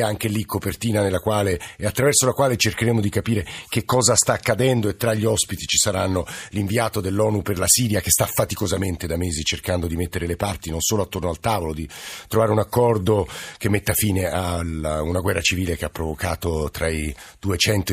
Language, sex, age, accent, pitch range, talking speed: Italian, male, 50-69, native, 90-120 Hz, 200 wpm